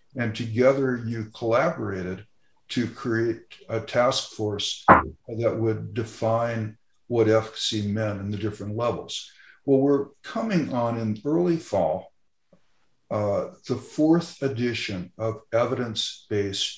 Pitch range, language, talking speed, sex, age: 110-150 Hz, English, 115 wpm, male, 60-79